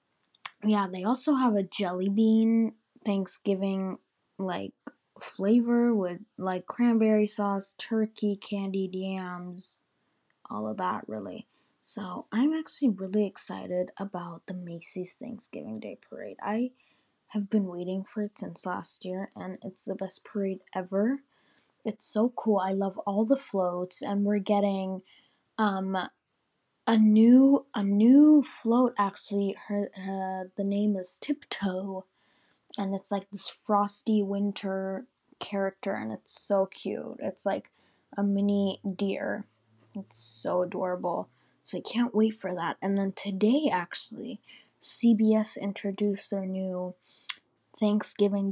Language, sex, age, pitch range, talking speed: English, female, 20-39, 190-220 Hz, 130 wpm